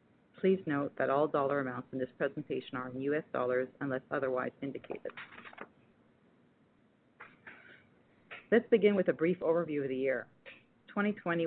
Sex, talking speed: female, 135 wpm